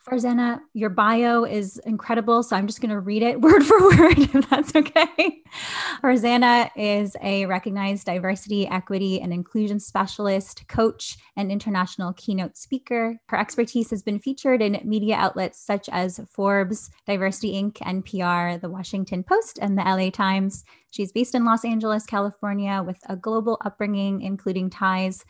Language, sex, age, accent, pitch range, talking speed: English, female, 20-39, American, 190-235 Hz, 155 wpm